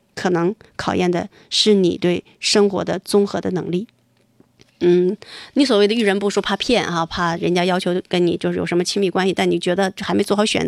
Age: 20-39